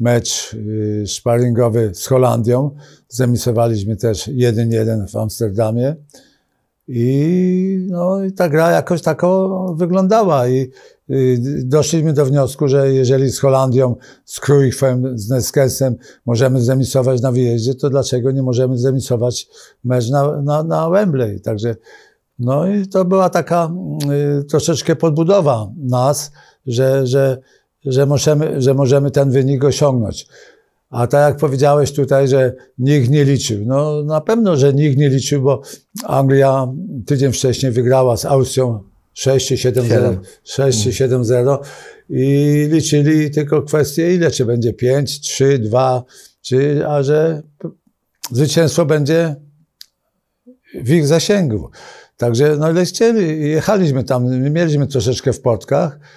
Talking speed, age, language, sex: 125 wpm, 50-69, Polish, male